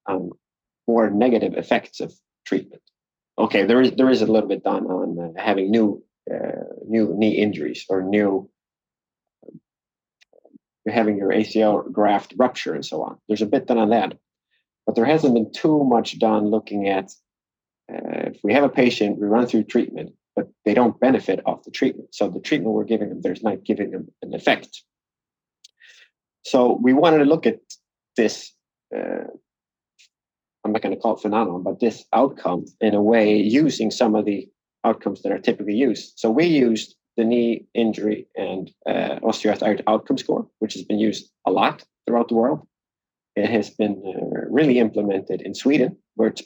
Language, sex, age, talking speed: English, male, 30-49, 180 wpm